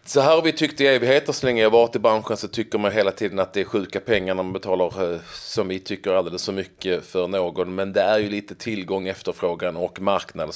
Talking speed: 240 wpm